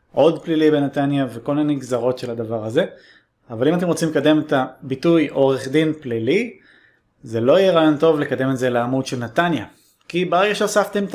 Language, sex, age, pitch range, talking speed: Hebrew, male, 30-49, 125-155 Hz, 180 wpm